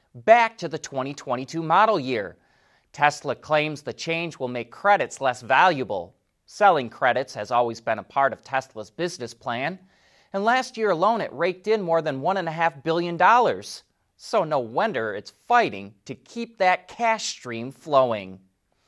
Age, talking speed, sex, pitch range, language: 30-49, 165 wpm, male, 130-205 Hz, English